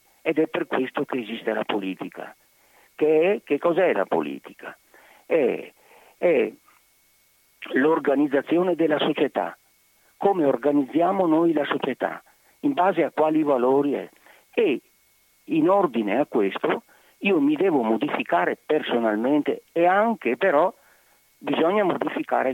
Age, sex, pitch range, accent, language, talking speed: 50-69, male, 135-210 Hz, native, Italian, 120 wpm